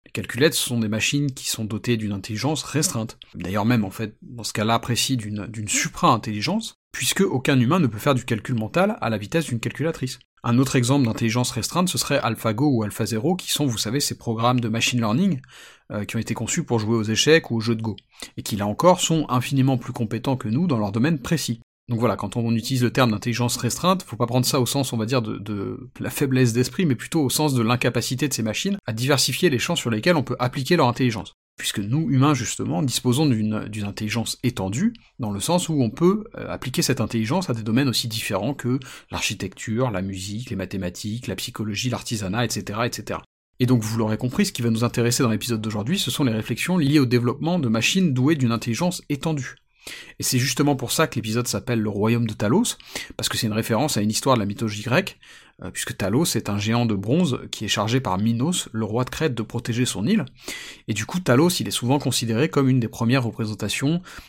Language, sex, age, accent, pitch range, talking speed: French, male, 40-59, French, 110-140 Hz, 225 wpm